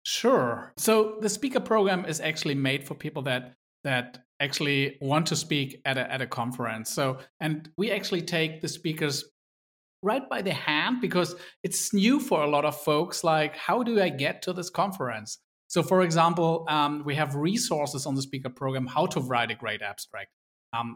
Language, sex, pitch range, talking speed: English, male, 130-165 Hz, 190 wpm